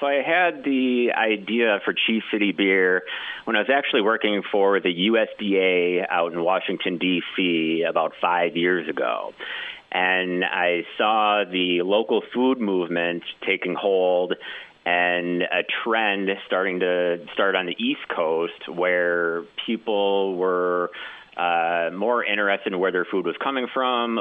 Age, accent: 40-59, American